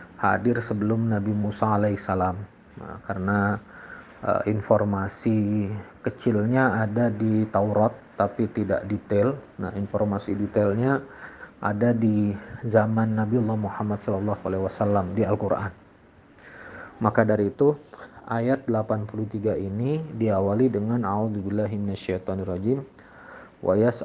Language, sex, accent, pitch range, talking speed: Indonesian, male, native, 100-120 Hz, 100 wpm